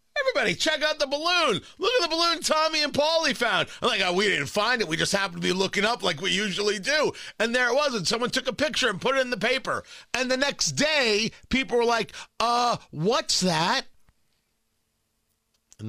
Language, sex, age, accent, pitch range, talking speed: English, male, 40-59, American, 185-255 Hz, 215 wpm